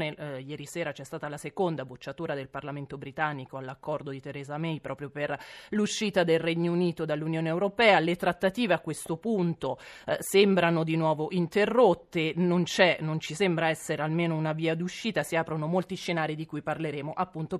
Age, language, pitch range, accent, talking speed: 30-49, Italian, 155-185 Hz, native, 175 wpm